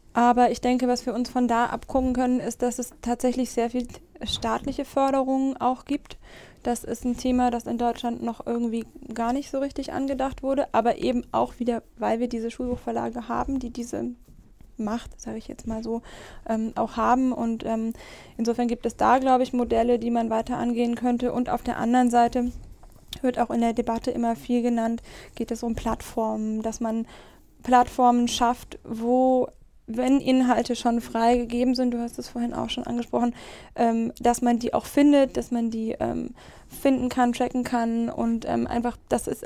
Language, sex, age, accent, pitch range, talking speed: German, female, 20-39, German, 230-250 Hz, 185 wpm